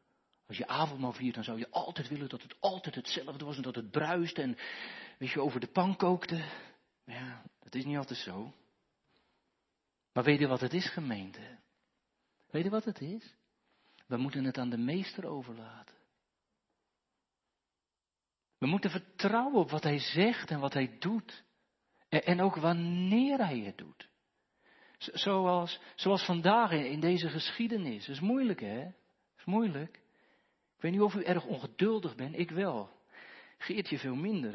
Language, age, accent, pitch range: Dutch, 40-59, Dutch, 145-200 Hz